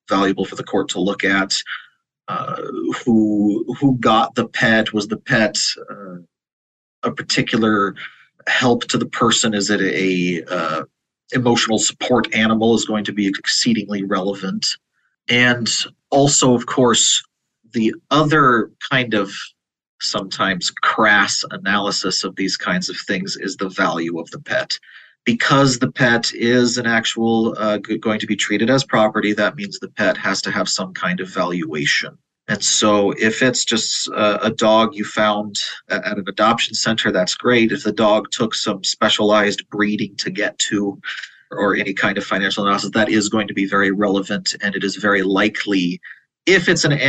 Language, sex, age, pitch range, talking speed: English, male, 30-49, 100-115 Hz, 160 wpm